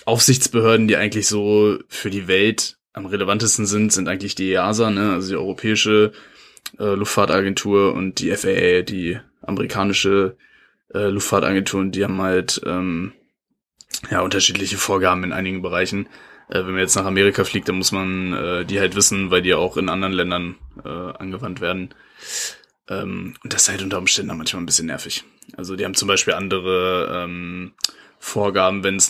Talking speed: 170 wpm